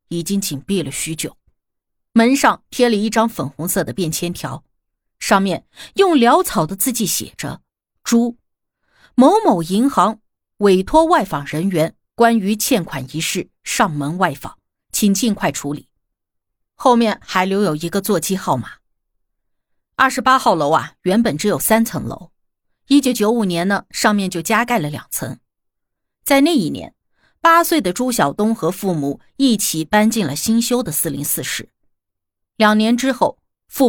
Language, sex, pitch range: Chinese, female, 165-255 Hz